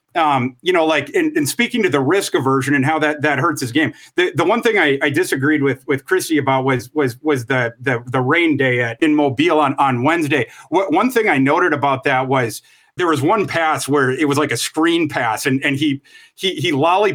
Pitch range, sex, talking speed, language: 135-215 Hz, male, 235 wpm, English